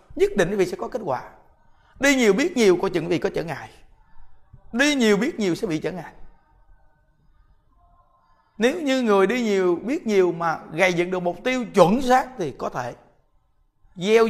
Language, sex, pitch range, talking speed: Vietnamese, male, 155-230 Hz, 190 wpm